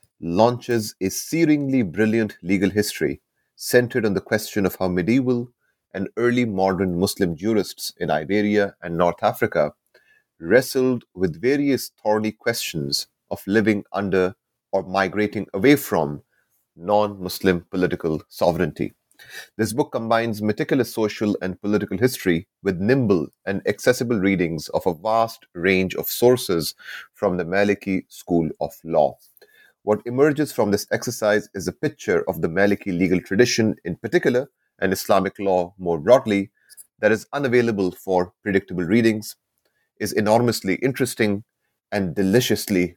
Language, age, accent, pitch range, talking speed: English, 30-49, Indian, 95-120 Hz, 130 wpm